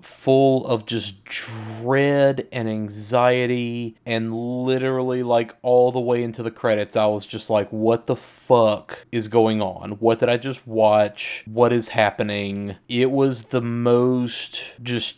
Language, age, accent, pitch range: English, 30-49, American, 110-125 Hz